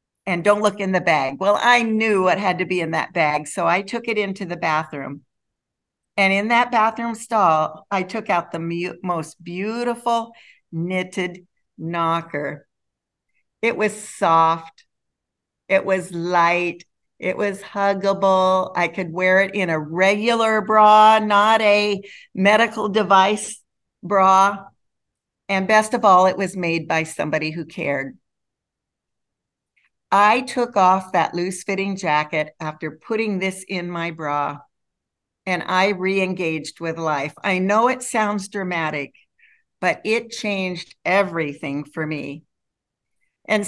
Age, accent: 50-69, American